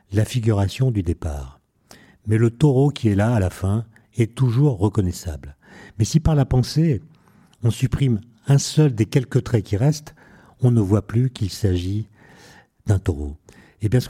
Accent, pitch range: French, 95-125 Hz